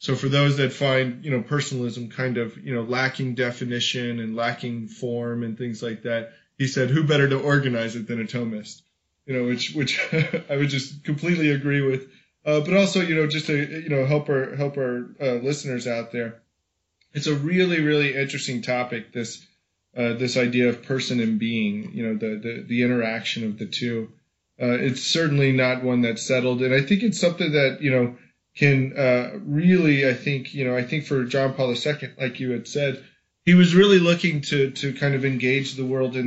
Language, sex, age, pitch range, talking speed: English, male, 20-39, 120-140 Hz, 205 wpm